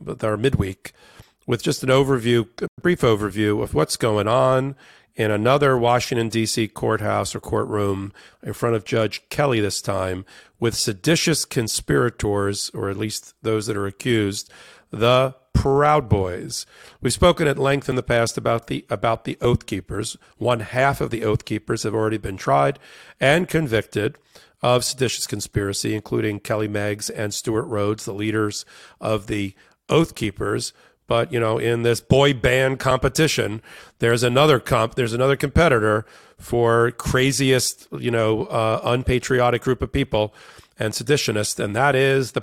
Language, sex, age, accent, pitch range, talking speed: English, male, 40-59, American, 105-130 Hz, 155 wpm